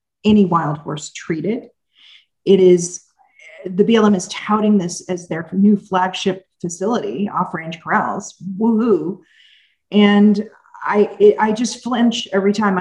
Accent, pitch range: American, 185-225 Hz